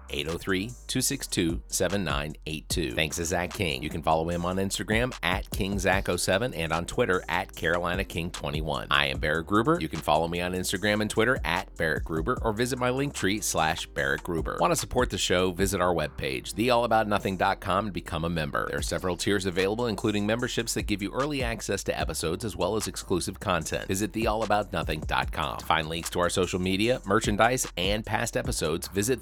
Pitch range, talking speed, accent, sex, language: 85-110 Hz, 175 wpm, American, male, English